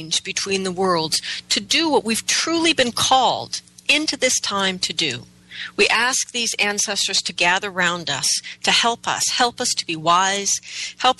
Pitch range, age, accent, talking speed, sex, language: 140-210 Hz, 40-59, American, 170 wpm, female, English